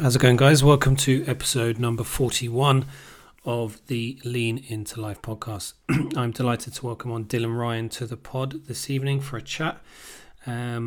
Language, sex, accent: English, male, British